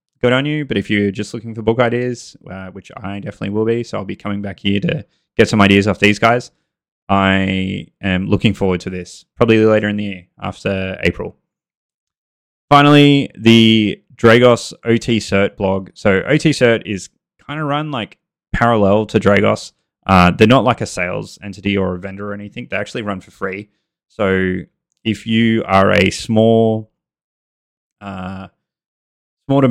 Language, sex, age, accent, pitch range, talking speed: English, male, 20-39, Australian, 95-115 Hz, 170 wpm